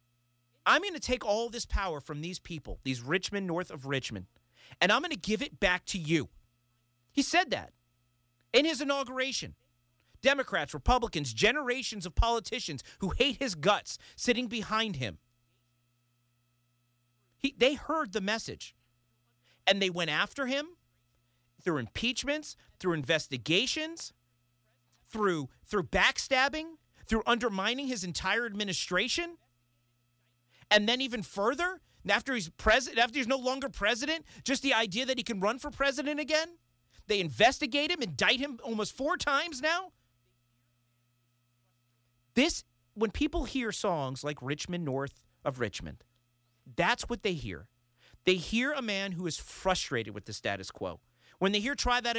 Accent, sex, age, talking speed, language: American, male, 40-59, 145 wpm, English